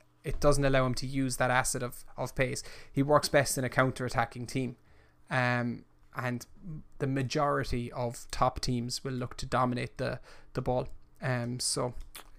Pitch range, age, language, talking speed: 120-135 Hz, 20-39, English, 170 wpm